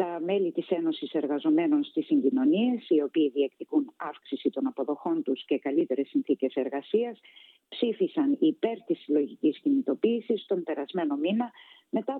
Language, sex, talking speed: Greek, female, 135 wpm